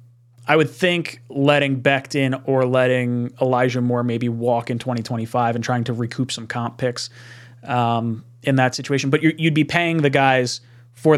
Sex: male